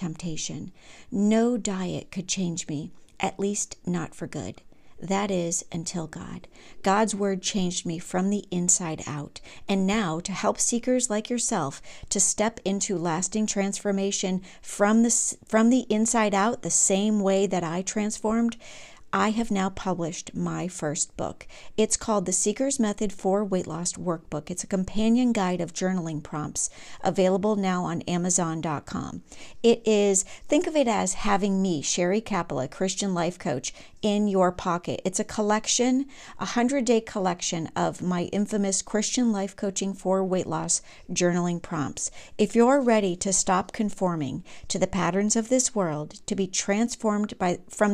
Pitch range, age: 170-215 Hz, 40-59